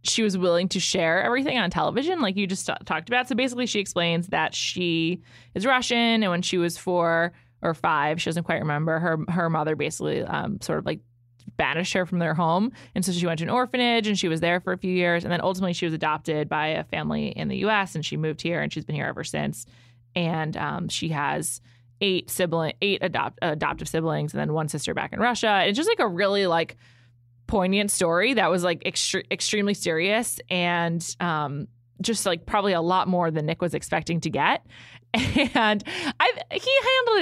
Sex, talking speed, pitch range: female, 215 wpm, 160-205 Hz